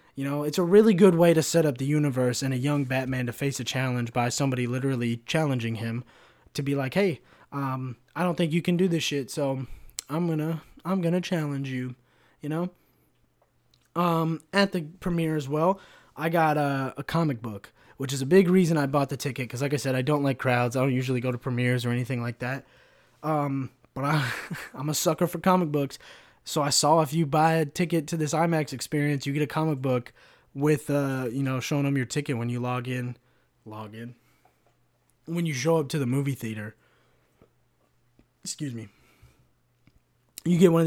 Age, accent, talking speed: 20-39, American, 210 wpm